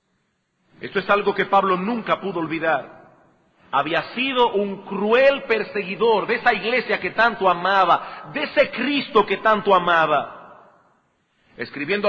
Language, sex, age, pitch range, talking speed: Spanish, male, 40-59, 190-240 Hz, 130 wpm